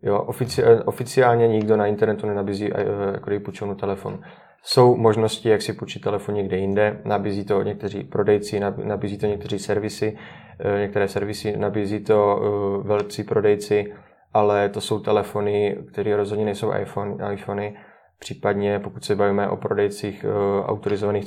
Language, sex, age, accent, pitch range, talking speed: Czech, male, 20-39, native, 100-105 Hz, 140 wpm